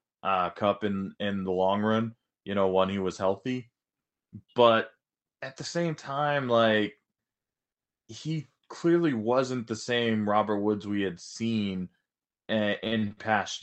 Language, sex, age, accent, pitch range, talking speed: English, male, 20-39, American, 100-120 Hz, 135 wpm